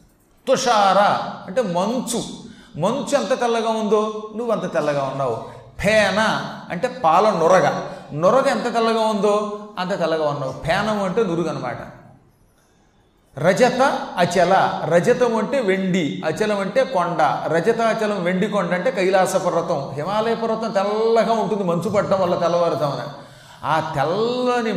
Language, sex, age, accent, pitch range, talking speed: Telugu, male, 30-49, native, 175-225 Hz, 120 wpm